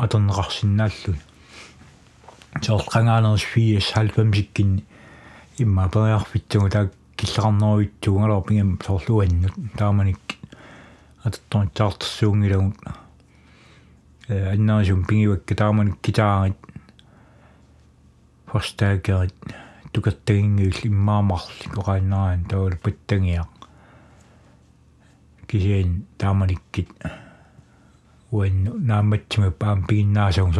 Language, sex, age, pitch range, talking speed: Danish, male, 60-79, 95-110 Hz, 65 wpm